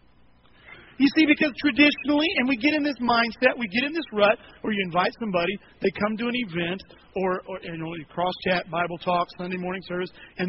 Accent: American